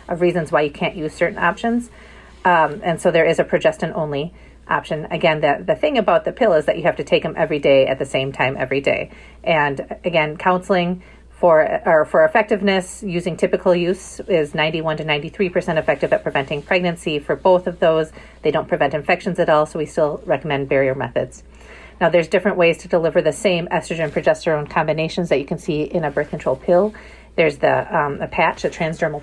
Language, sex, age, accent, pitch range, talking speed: English, female, 40-59, American, 150-180 Hz, 200 wpm